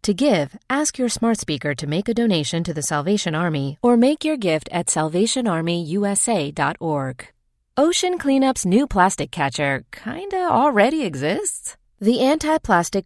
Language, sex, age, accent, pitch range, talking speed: English, female, 30-49, American, 150-235 Hz, 140 wpm